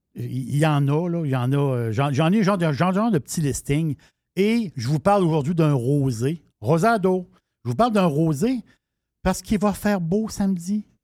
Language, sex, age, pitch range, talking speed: French, male, 60-79, 130-180 Hz, 210 wpm